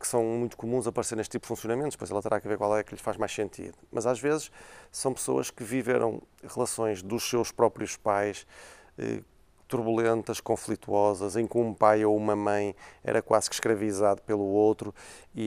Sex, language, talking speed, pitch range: male, Portuguese, 195 wpm, 105-120 Hz